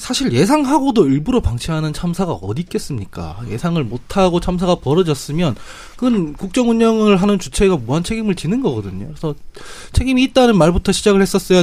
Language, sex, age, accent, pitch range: Korean, male, 20-39, native, 150-220 Hz